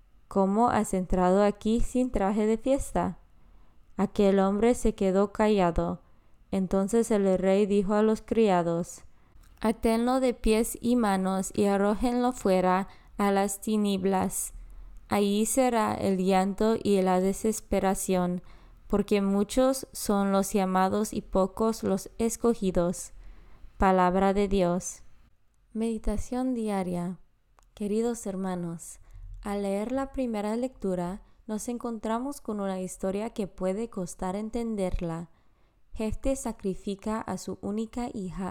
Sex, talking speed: female, 115 wpm